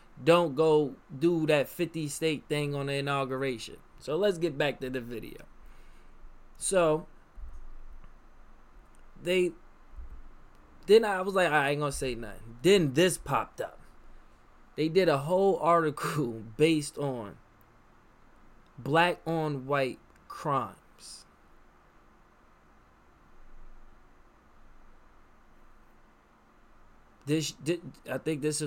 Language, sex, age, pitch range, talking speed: English, male, 20-39, 120-180 Hz, 95 wpm